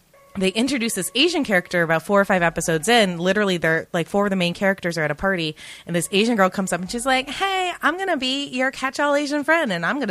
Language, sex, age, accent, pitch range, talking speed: English, female, 20-39, American, 150-210 Hz, 265 wpm